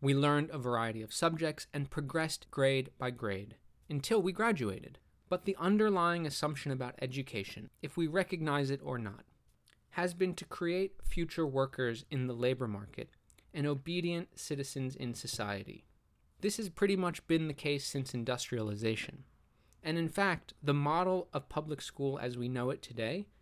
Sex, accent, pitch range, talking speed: male, American, 125-160 Hz, 160 wpm